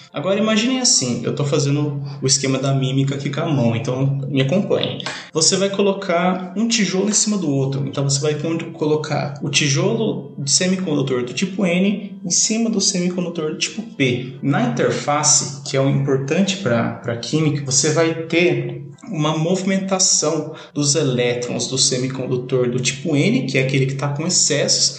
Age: 20-39